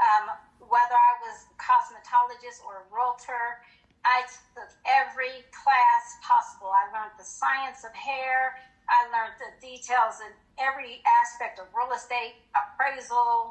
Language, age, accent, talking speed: English, 40-59, American, 140 wpm